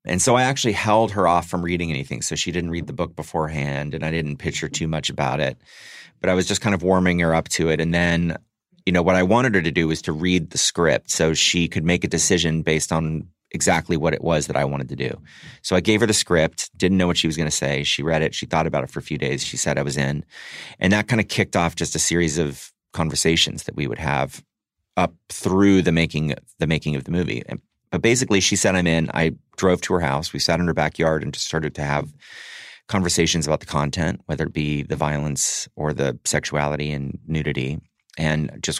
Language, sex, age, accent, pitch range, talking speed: English, male, 30-49, American, 75-90 Hz, 250 wpm